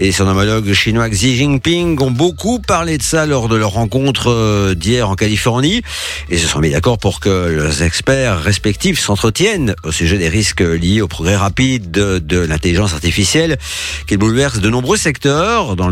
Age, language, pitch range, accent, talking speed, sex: 50-69, French, 90-135 Hz, French, 175 wpm, male